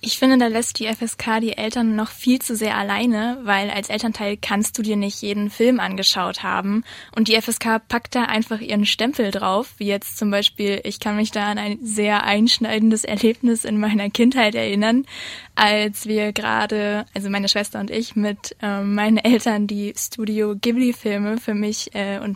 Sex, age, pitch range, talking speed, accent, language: female, 20-39, 205-240 Hz, 185 wpm, German, German